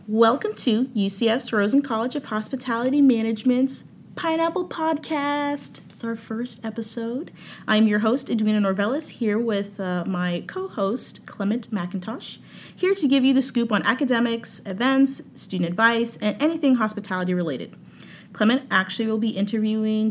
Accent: American